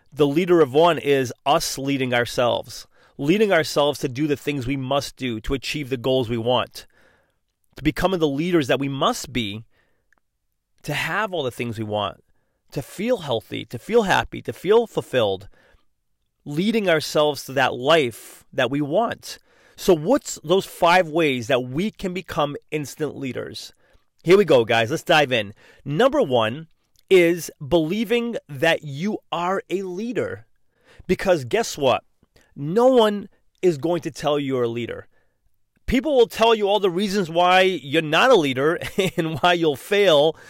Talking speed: 165 wpm